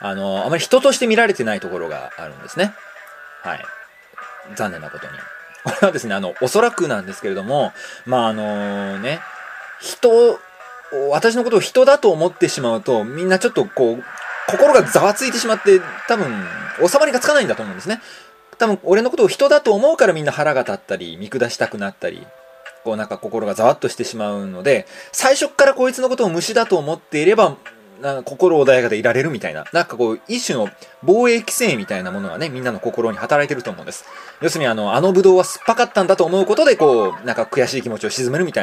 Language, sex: Japanese, male